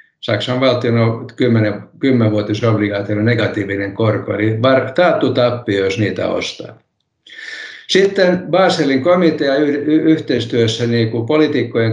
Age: 50-69